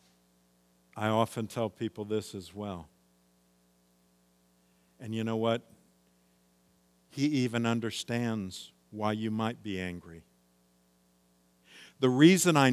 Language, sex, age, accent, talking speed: English, male, 50-69, American, 105 wpm